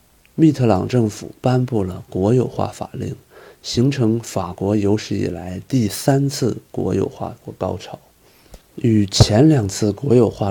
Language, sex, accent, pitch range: Chinese, male, native, 100-130 Hz